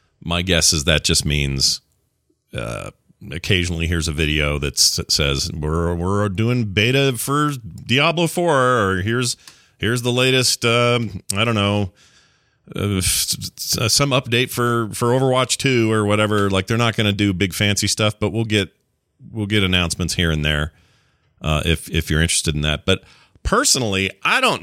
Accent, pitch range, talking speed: American, 95-130 Hz, 165 wpm